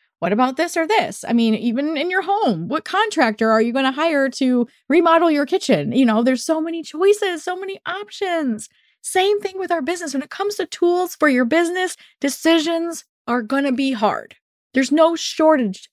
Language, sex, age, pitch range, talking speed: English, female, 20-39, 240-350 Hz, 200 wpm